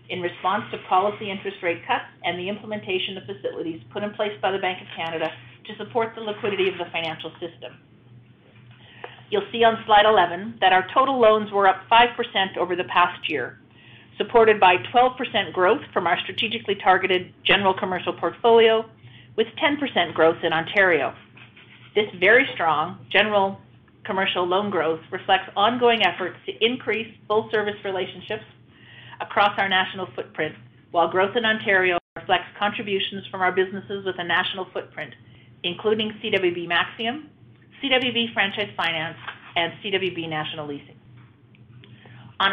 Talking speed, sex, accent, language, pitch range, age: 145 wpm, female, American, English, 165-210 Hz, 40-59